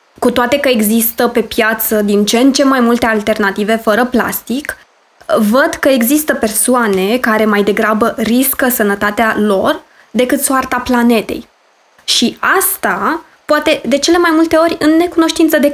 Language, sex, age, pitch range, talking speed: Romanian, female, 20-39, 225-290 Hz, 150 wpm